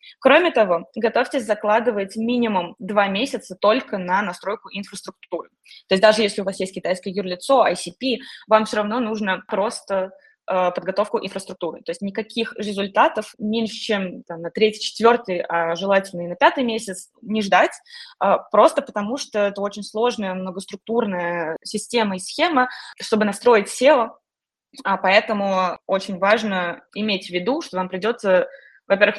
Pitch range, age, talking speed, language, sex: 190-240 Hz, 20-39, 145 wpm, Russian, female